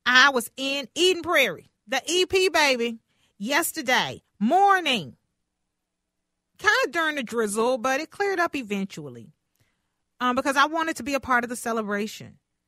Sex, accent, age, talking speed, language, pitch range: female, American, 40-59, 145 wpm, English, 190-260 Hz